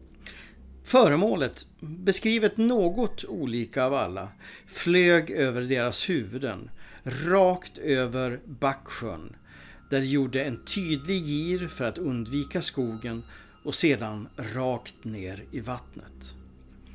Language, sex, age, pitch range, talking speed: English, male, 60-79, 110-160 Hz, 100 wpm